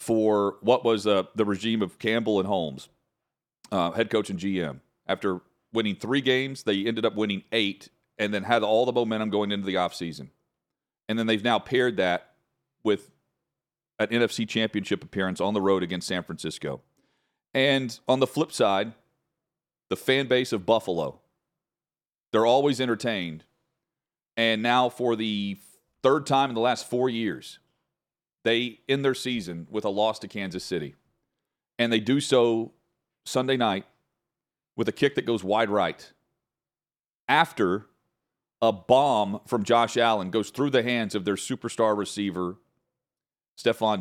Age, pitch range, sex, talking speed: 40-59, 105-120 Hz, male, 155 wpm